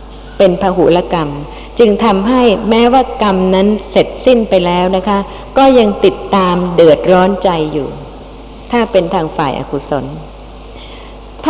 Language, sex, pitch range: Thai, female, 170-225 Hz